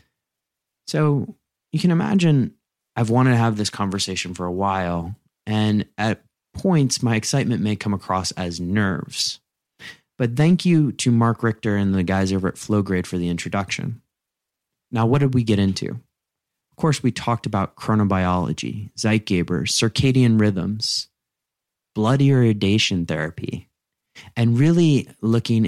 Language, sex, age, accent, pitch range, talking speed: English, male, 30-49, American, 95-125 Hz, 140 wpm